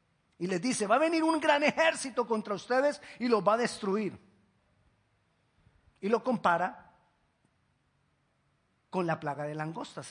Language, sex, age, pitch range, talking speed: Spanish, male, 50-69, 150-215 Hz, 140 wpm